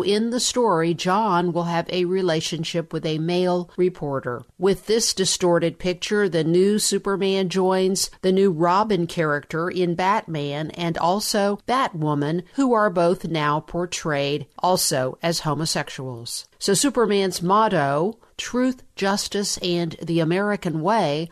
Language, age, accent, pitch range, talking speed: English, 50-69, American, 165-200 Hz, 130 wpm